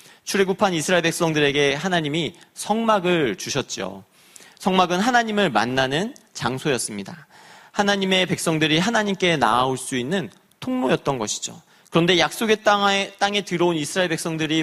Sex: male